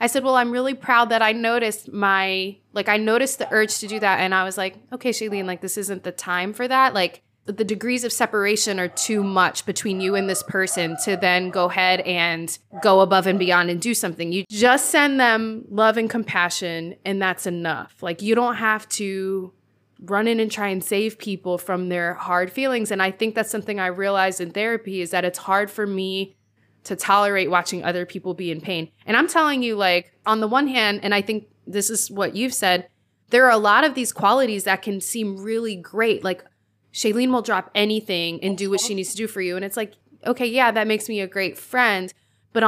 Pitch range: 185-220 Hz